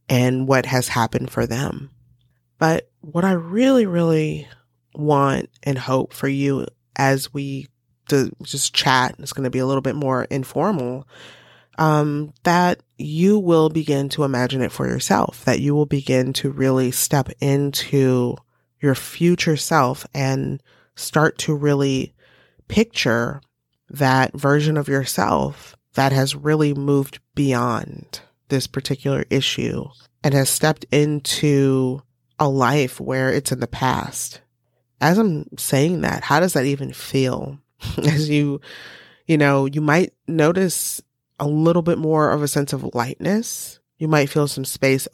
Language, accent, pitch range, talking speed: English, American, 130-155 Hz, 145 wpm